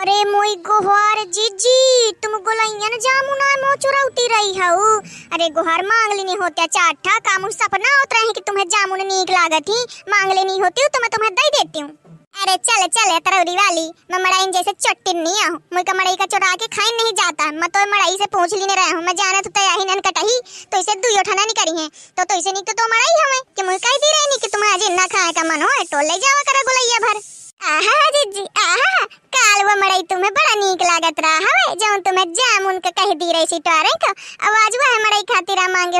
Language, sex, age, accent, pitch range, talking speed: Hindi, male, 20-39, native, 345-425 Hz, 110 wpm